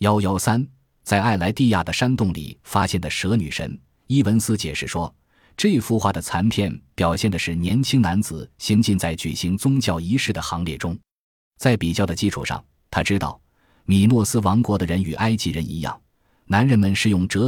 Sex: male